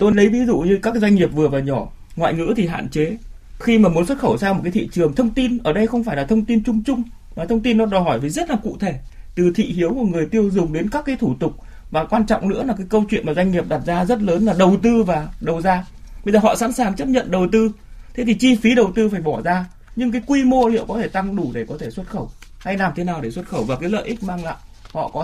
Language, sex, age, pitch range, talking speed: Vietnamese, male, 20-39, 170-230 Hz, 305 wpm